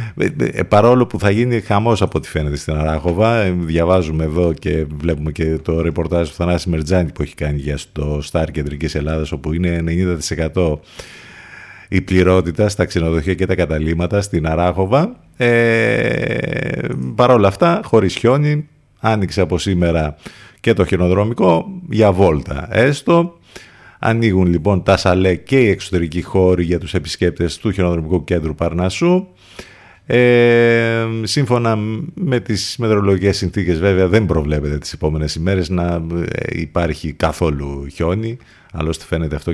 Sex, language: male, Greek